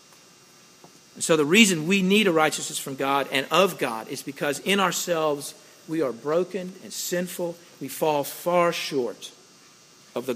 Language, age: English, 50-69